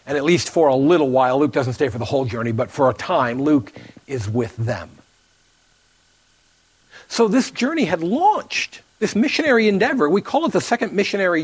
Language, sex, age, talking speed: English, male, 50-69, 190 wpm